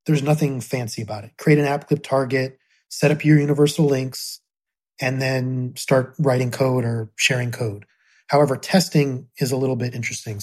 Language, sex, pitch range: English, male, 125-145 Hz